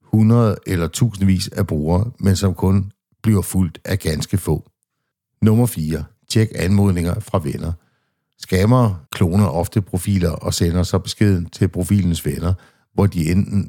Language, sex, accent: Danish, male, native